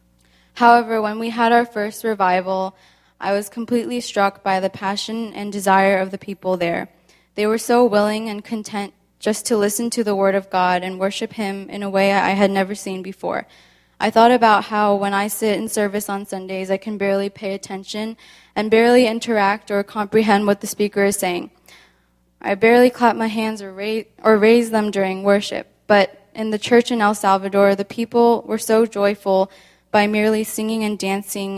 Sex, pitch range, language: female, 195-220 Hz, Korean